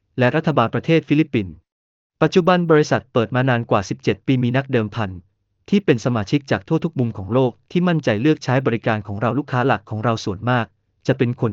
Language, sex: Thai, male